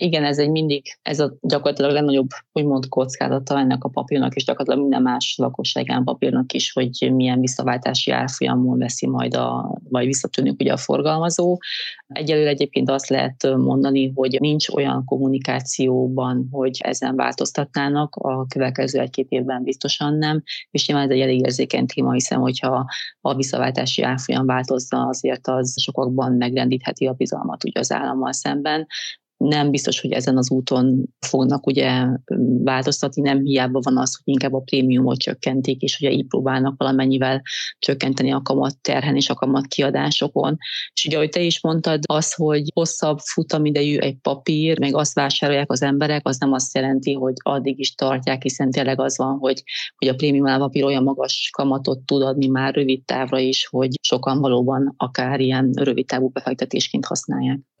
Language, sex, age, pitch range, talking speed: Hungarian, female, 30-49, 130-140 Hz, 160 wpm